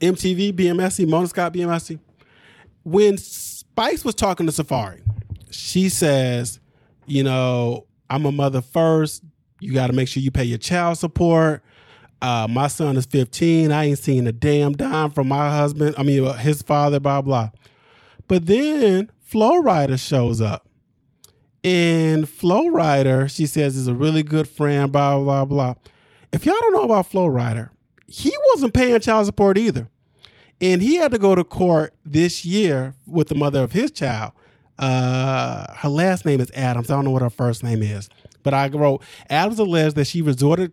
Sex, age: male, 20-39